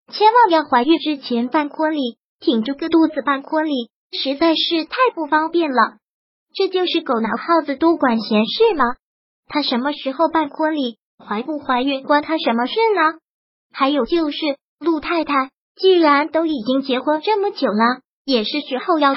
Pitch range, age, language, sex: 270-330 Hz, 20-39, Chinese, male